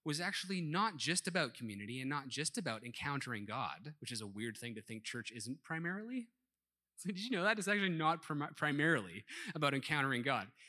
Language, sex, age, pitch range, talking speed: English, male, 30-49, 120-185 Hz, 185 wpm